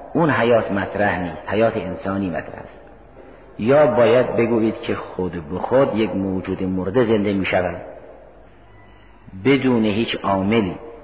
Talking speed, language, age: 130 wpm, Persian, 50-69